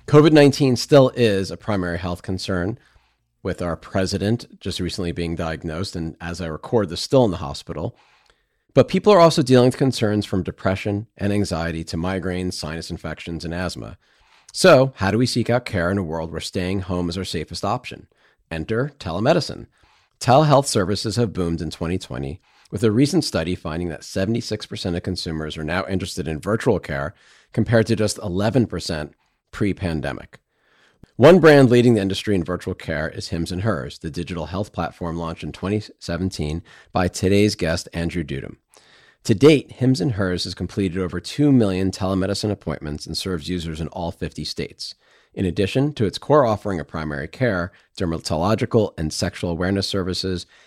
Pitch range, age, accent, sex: 85-110 Hz, 40-59, American, male